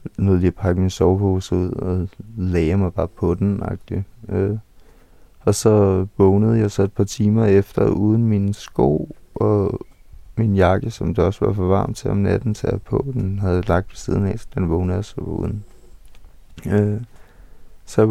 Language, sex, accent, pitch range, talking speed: Danish, male, native, 95-110 Hz, 190 wpm